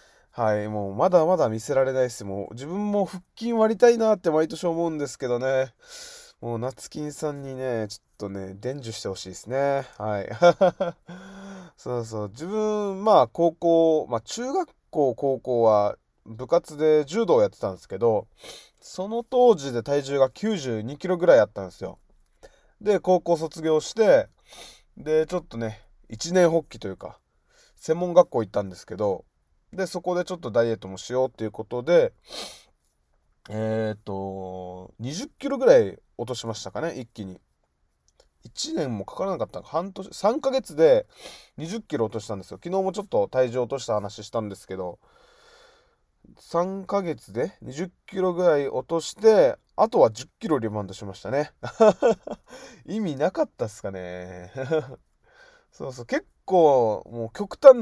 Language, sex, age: Japanese, male, 20-39